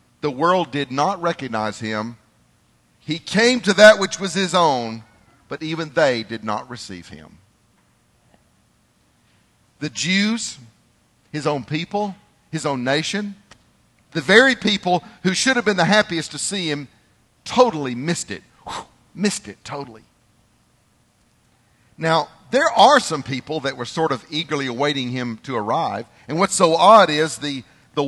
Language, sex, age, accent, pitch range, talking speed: English, male, 50-69, American, 145-225 Hz, 145 wpm